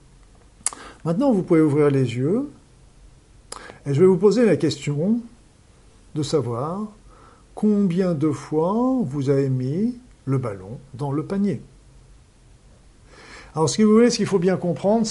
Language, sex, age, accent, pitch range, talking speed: French, male, 50-69, French, 135-195 Hz, 145 wpm